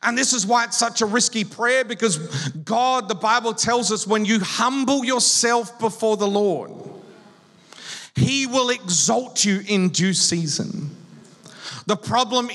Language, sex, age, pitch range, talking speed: English, male, 40-59, 140-205 Hz, 150 wpm